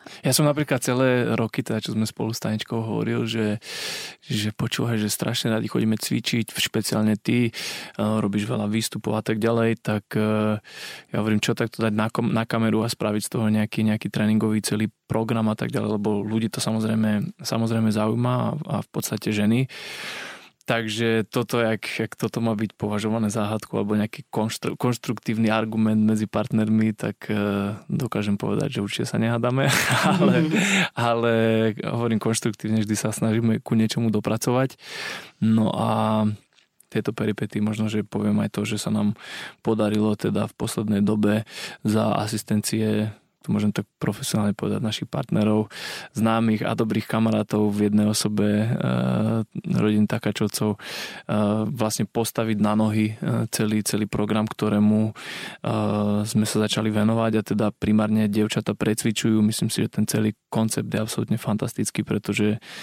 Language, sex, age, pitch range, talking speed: Slovak, male, 20-39, 105-115 Hz, 150 wpm